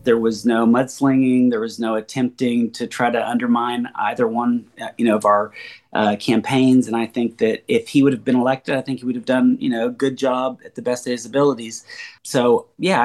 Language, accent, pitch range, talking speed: English, American, 115-140 Hz, 225 wpm